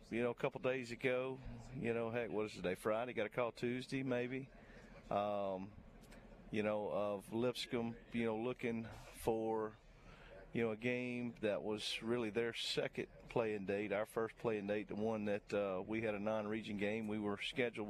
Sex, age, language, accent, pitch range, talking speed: male, 40-59, English, American, 105-125 Hz, 180 wpm